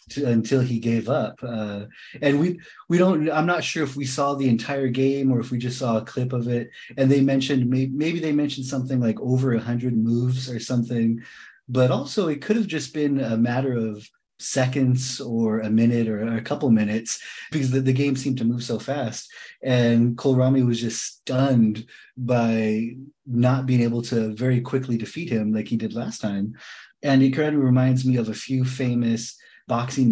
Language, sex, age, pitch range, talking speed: English, male, 30-49, 115-135 Hz, 195 wpm